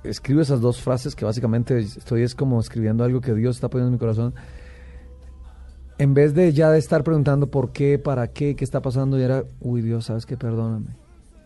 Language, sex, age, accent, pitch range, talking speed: Spanish, male, 30-49, Mexican, 105-135 Hz, 205 wpm